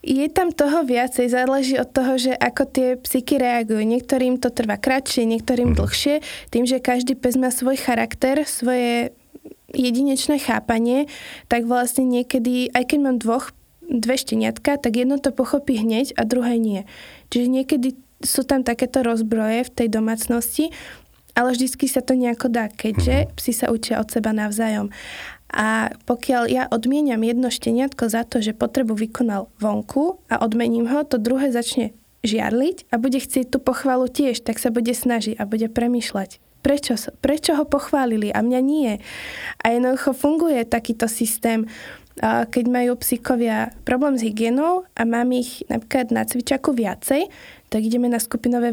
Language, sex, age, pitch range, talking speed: Slovak, female, 20-39, 230-270 Hz, 160 wpm